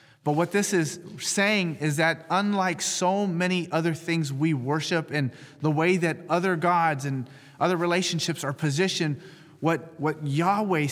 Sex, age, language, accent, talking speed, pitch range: male, 30-49, English, American, 155 wpm, 140-175 Hz